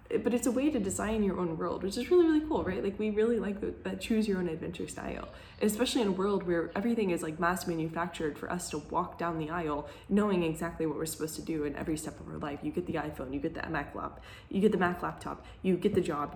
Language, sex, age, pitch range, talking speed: English, female, 10-29, 165-215 Hz, 270 wpm